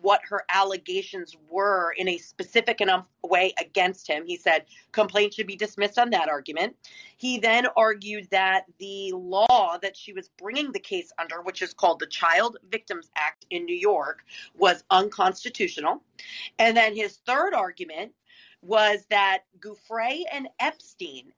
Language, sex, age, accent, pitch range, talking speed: English, female, 40-59, American, 195-270 Hz, 155 wpm